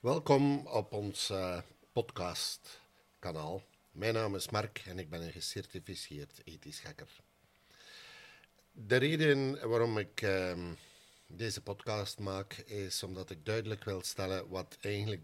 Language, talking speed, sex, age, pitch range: Dutch, 120 wpm, male, 50-69, 95-125 Hz